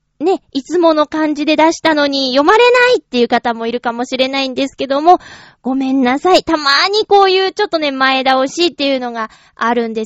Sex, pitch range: female, 235-340 Hz